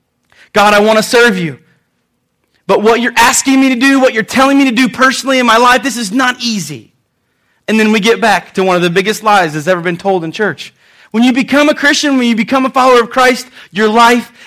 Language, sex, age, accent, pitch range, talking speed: English, male, 30-49, American, 155-240 Hz, 240 wpm